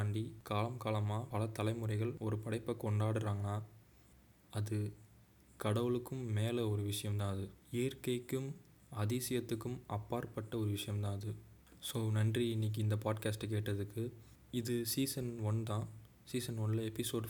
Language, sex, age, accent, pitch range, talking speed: Tamil, male, 20-39, native, 105-115 Hz, 120 wpm